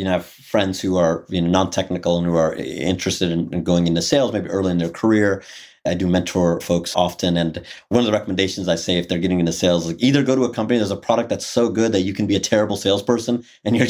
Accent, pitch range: American, 90-105 Hz